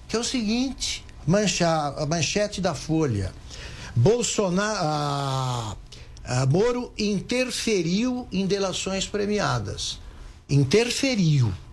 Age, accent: 60-79, Brazilian